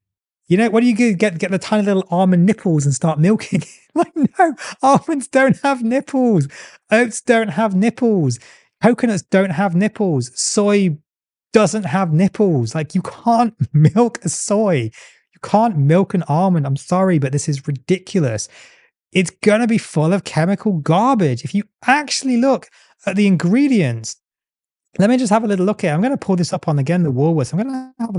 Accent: British